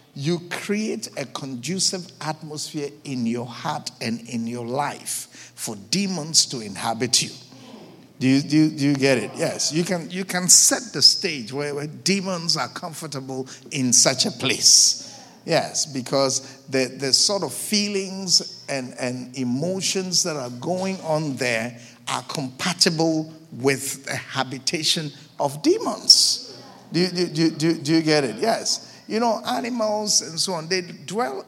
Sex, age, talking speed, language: male, 50-69, 155 wpm, English